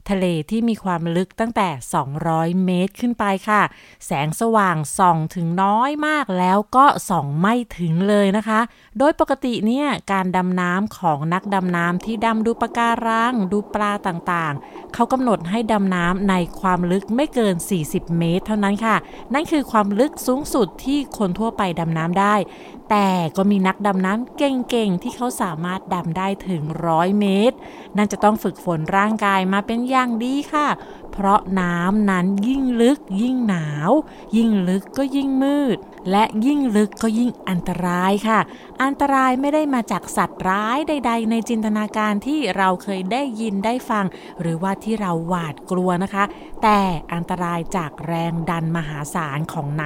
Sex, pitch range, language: female, 180-235 Hz, Thai